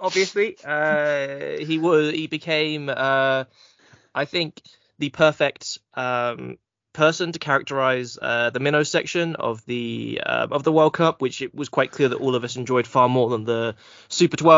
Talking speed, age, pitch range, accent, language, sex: 170 wpm, 20-39, 130-165 Hz, British, English, male